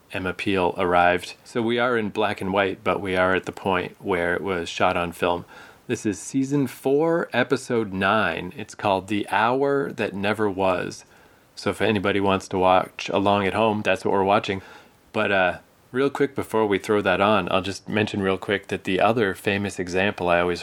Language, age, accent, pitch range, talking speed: English, 30-49, American, 95-110 Hz, 200 wpm